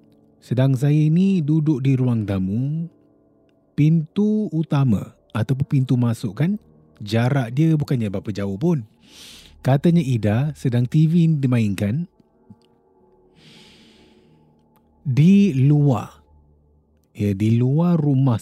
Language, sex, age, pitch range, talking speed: Malay, male, 30-49, 95-140 Hz, 100 wpm